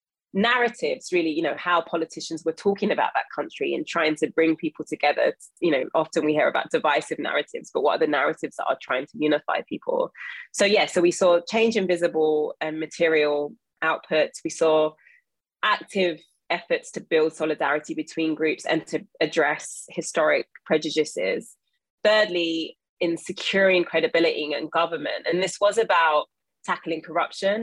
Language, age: English, 20-39